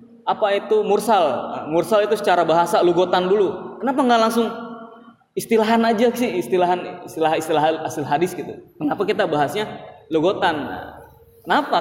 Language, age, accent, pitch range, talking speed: Indonesian, 20-39, native, 170-235 Hz, 135 wpm